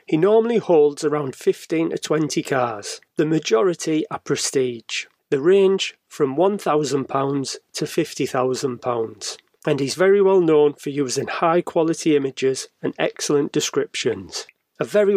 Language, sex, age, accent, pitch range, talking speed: English, male, 30-49, British, 140-180 Hz, 130 wpm